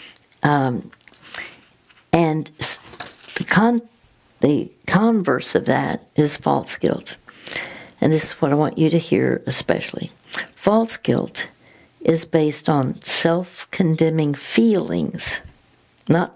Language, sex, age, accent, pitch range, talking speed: English, female, 60-79, American, 150-185 Hz, 105 wpm